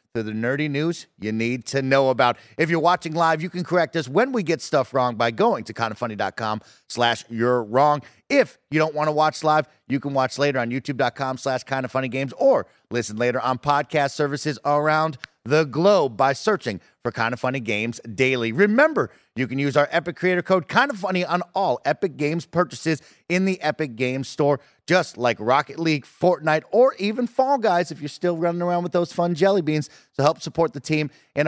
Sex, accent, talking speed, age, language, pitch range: male, American, 200 wpm, 30-49, English, 125-165 Hz